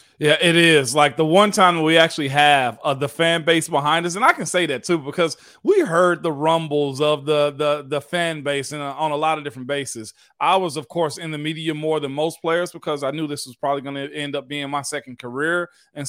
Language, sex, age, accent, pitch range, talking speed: English, male, 30-49, American, 145-175 Hz, 245 wpm